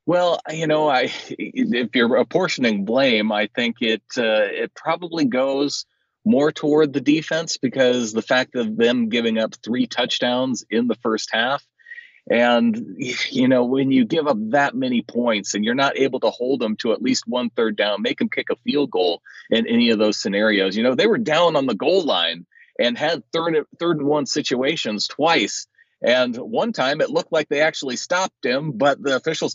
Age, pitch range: 30-49, 120-165 Hz